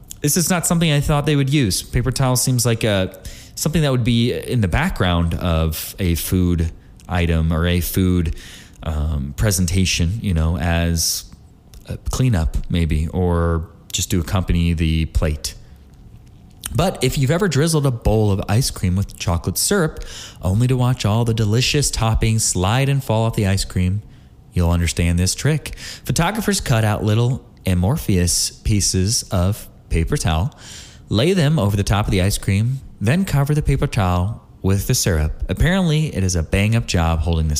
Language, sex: English, male